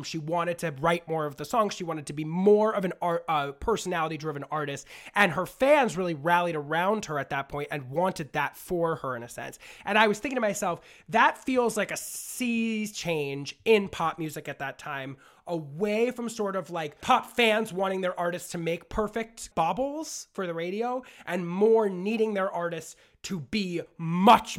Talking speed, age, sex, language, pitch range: 195 wpm, 30-49, male, English, 160-205 Hz